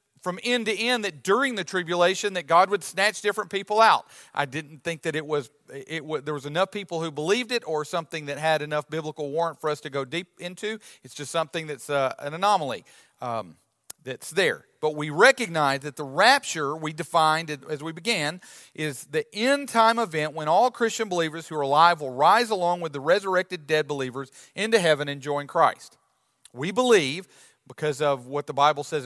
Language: English